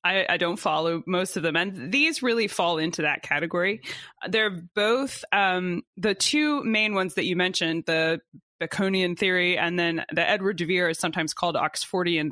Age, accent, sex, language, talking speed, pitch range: 20-39, American, female, English, 180 wpm, 175-225 Hz